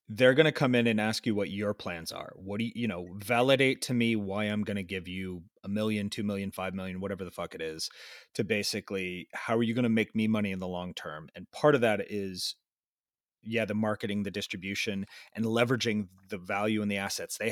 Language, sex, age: English, male, 30-49